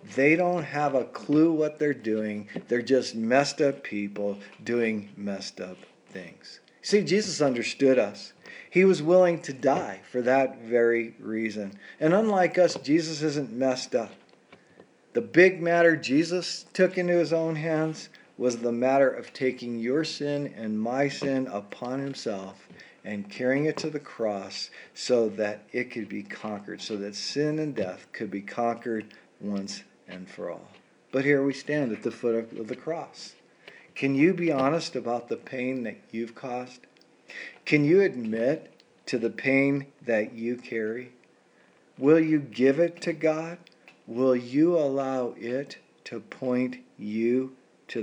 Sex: male